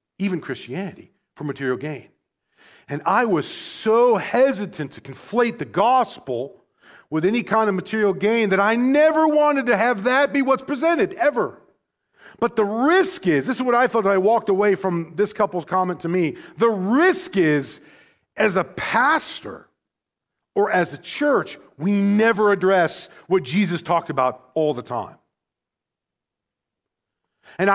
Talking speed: 155 wpm